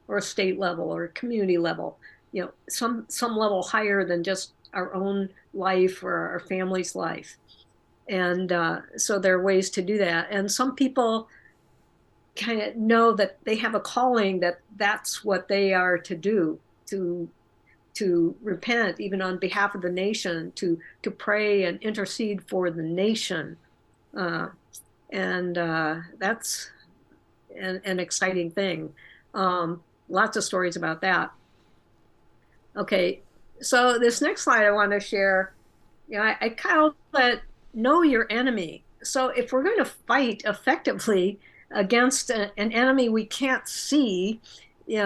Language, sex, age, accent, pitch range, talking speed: English, female, 50-69, American, 185-235 Hz, 155 wpm